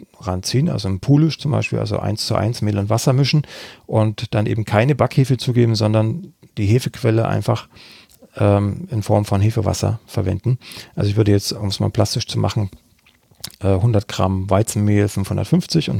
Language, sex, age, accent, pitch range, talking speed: German, male, 40-59, German, 100-125 Hz, 175 wpm